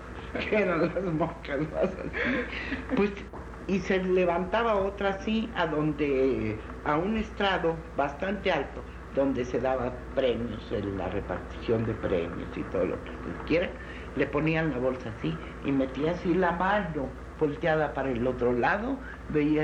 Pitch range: 145-200 Hz